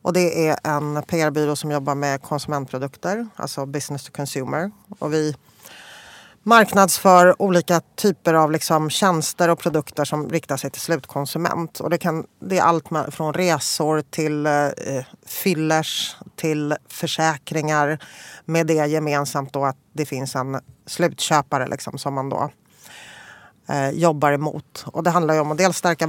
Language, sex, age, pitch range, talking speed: English, female, 30-49, 145-175 Hz, 150 wpm